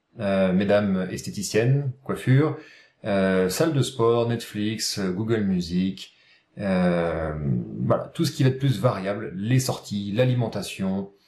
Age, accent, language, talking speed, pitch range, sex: 40-59, French, French, 130 wpm, 105-140 Hz, male